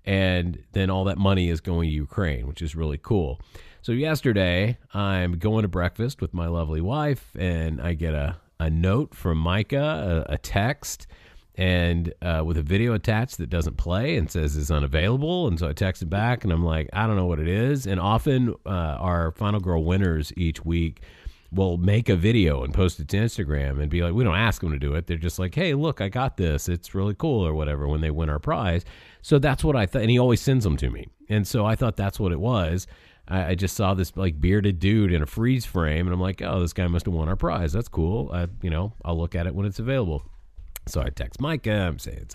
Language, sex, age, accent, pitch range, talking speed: English, male, 40-59, American, 80-105 Hz, 235 wpm